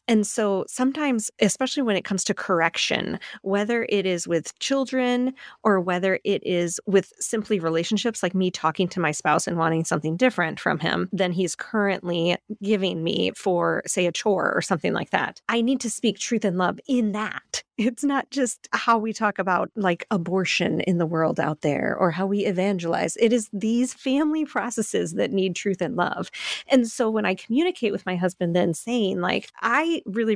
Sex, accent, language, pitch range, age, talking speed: female, American, English, 180-225 Hz, 30-49, 190 wpm